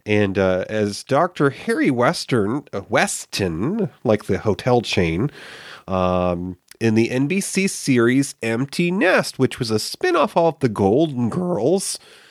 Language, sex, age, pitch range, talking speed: English, male, 40-59, 100-140 Hz, 130 wpm